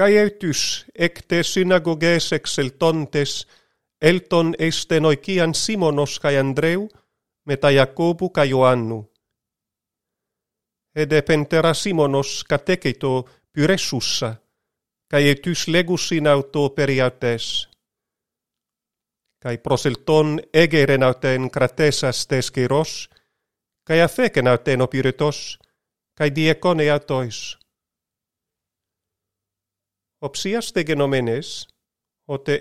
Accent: Finnish